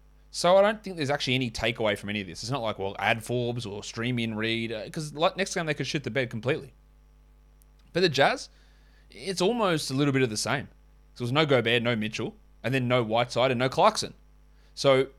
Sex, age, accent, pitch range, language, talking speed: male, 20-39, Australian, 120-155 Hz, English, 230 wpm